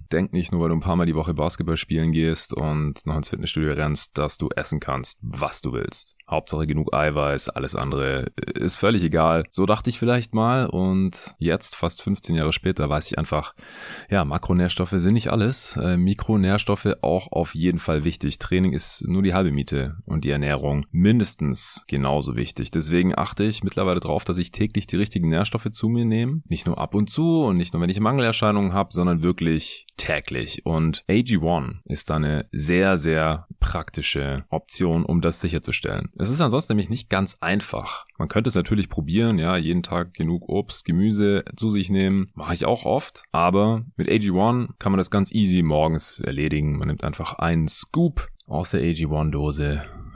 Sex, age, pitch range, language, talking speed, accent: male, 20-39, 80-100 Hz, German, 185 wpm, German